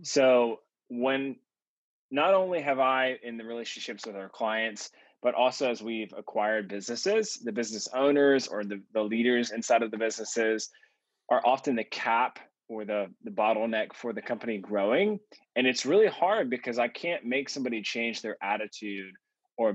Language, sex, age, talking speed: English, male, 20-39, 165 wpm